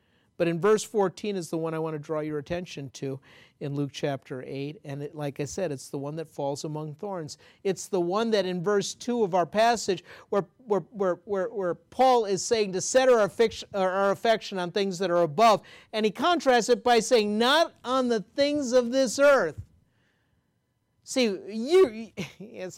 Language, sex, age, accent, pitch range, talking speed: English, male, 50-69, American, 150-200 Hz, 200 wpm